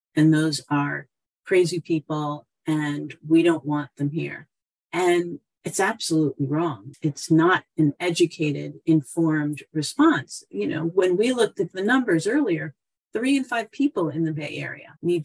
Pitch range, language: 155-195 Hz, English